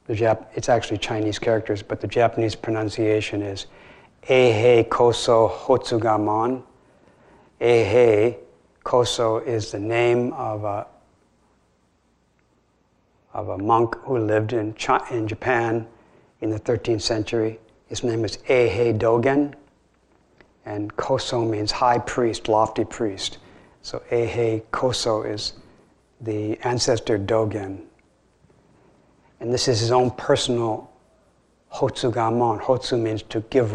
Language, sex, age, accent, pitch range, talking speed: English, male, 60-79, American, 105-120 Hz, 115 wpm